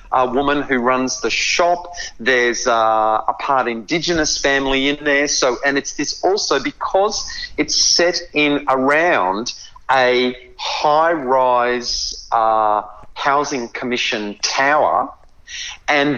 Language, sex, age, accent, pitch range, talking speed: English, male, 40-59, Australian, 120-175 Hz, 120 wpm